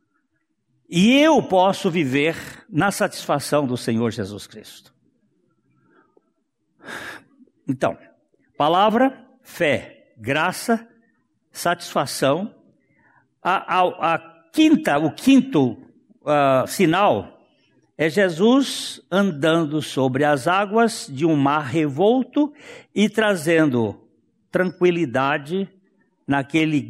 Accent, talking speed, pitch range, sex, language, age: Brazilian, 85 wpm, 145-205 Hz, male, Portuguese, 60-79